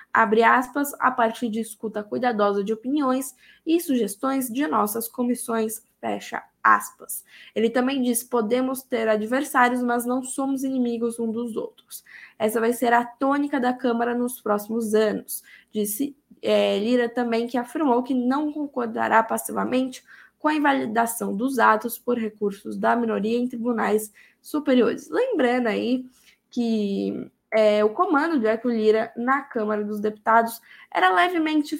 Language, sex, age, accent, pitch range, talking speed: Portuguese, female, 10-29, Brazilian, 220-265 Hz, 145 wpm